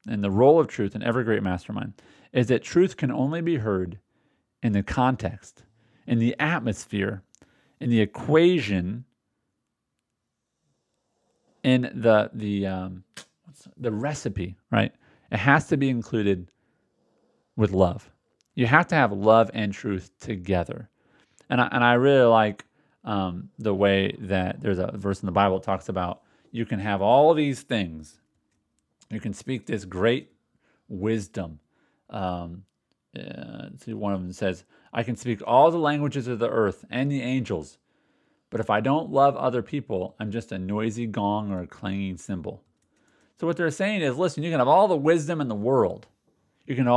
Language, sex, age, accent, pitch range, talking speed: English, male, 40-59, American, 100-135 Hz, 170 wpm